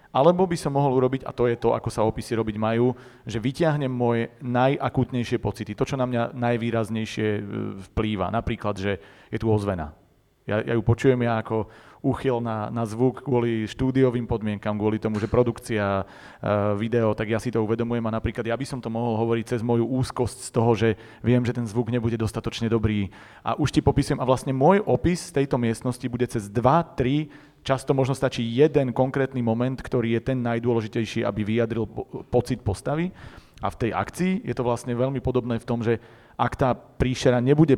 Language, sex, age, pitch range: Slovak, male, 30-49, 110-130 Hz